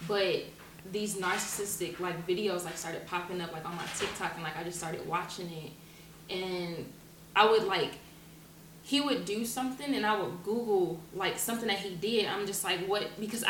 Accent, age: American, 20-39